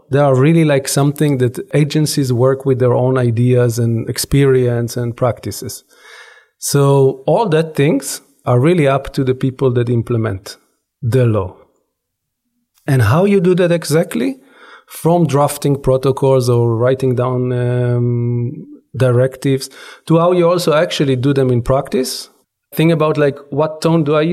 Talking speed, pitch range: 150 wpm, 125-150 Hz